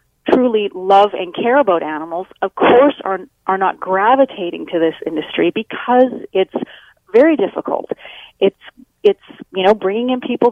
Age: 40-59